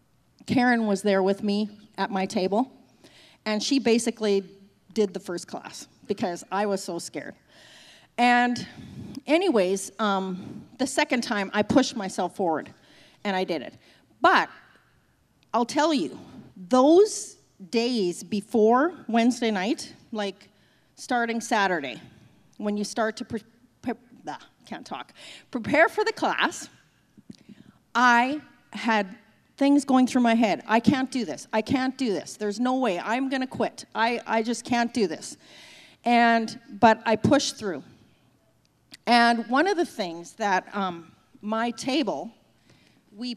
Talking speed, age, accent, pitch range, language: 140 wpm, 40-59, American, 205-255 Hz, English